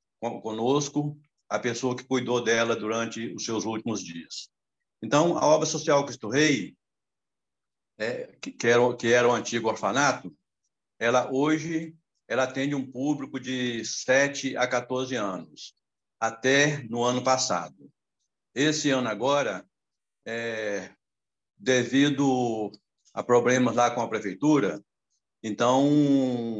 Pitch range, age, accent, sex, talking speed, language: 115-135 Hz, 60-79, Brazilian, male, 115 wpm, Portuguese